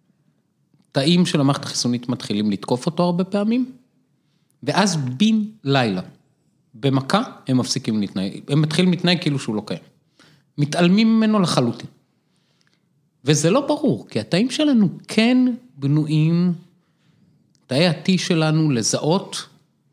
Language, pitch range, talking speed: Hebrew, 130-175 Hz, 115 wpm